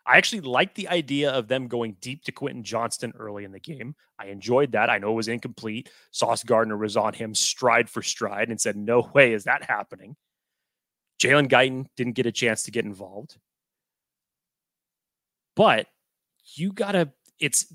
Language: English